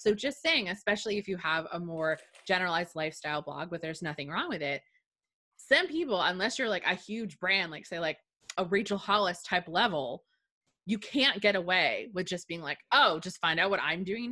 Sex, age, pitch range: female, 20-39, 165-220 Hz